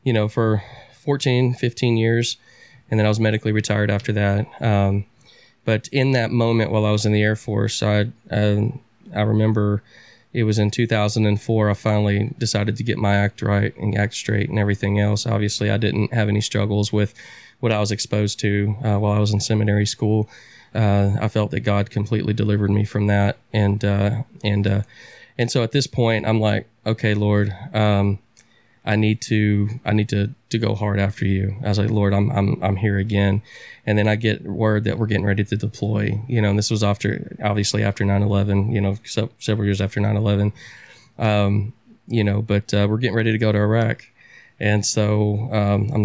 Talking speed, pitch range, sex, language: 200 wpm, 105-115 Hz, male, English